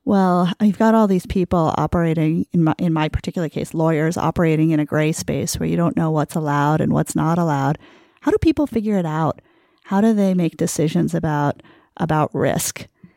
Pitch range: 160-200 Hz